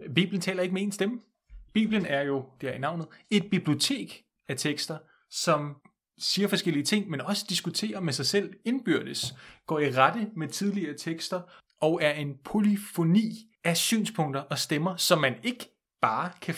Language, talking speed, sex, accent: Danish, 170 wpm, male, native